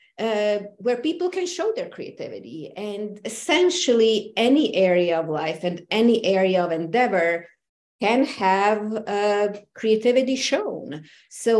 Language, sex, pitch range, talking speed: English, female, 190-245 Hz, 125 wpm